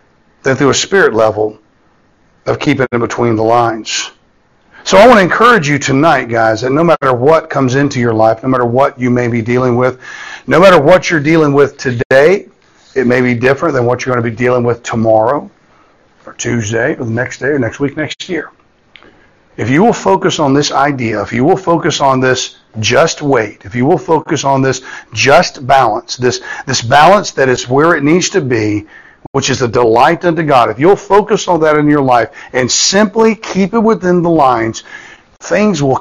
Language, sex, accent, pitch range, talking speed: English, male, American, 120-170 Hz, 205 wpm